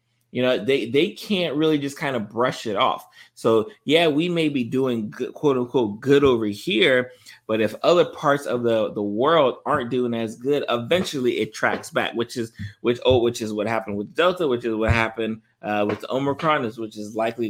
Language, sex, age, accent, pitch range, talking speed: English, male, 20-39, American, 105-130 Hz, 210 wpm